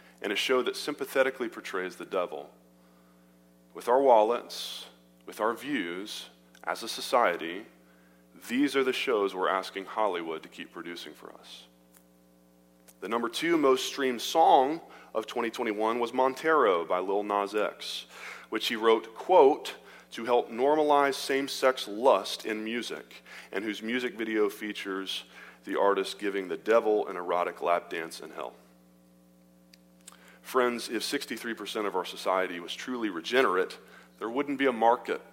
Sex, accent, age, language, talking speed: male, American, 30-49, English, 145 wpm